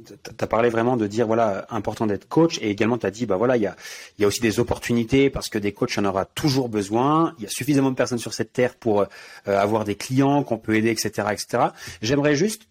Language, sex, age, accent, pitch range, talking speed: French, male, 30-49, French, 110-145 Hz, 250 wpm